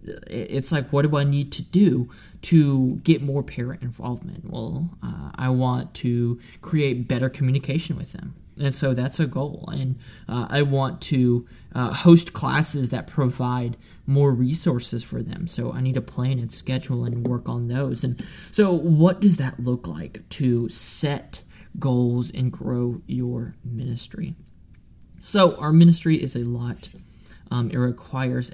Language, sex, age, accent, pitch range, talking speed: English, male, 20-39, American, 125-160 Hz, 160 wpm